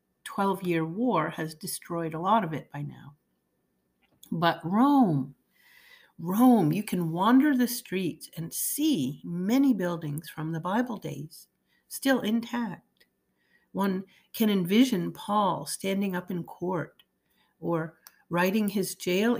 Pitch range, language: 170-235 Hz, English